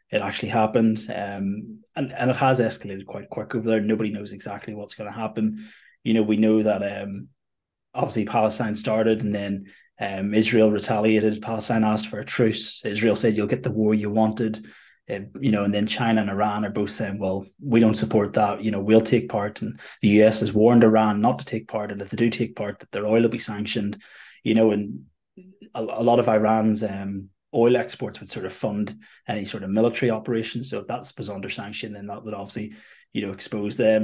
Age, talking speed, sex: 20-39, 215 wpm, male